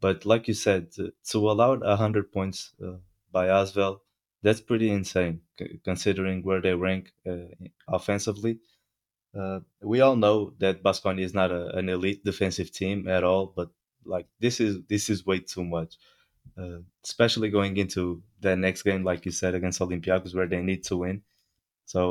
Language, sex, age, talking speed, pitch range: English, male, 20-39, 175 wpm, 95-105 Hz